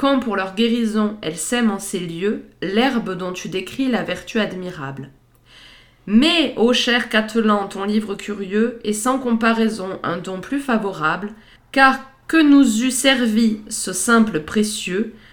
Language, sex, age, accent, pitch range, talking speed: French, female, 20-39, French, 195-245 Hz, 150 wpm